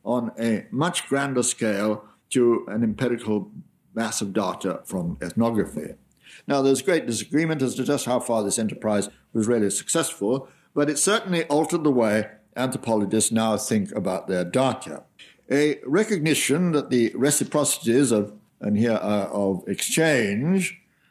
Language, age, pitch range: English, 60-79, 105-150 Hz